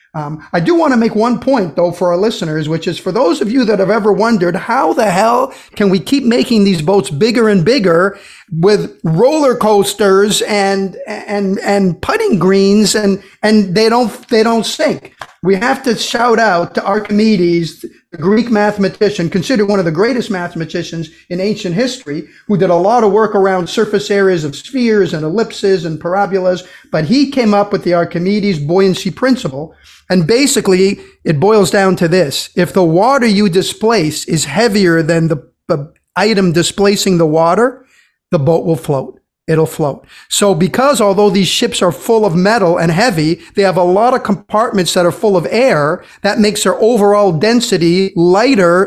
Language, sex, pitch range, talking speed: English, male, 175-215 Hz, 180 wpm